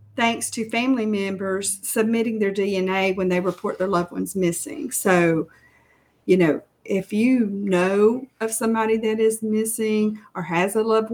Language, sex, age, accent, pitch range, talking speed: English, female, 40-59, American, 190-235 Hz, 155 wpm